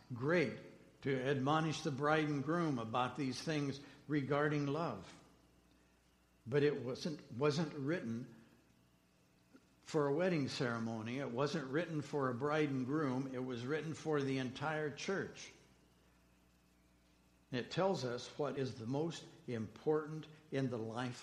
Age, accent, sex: 60-79, American, male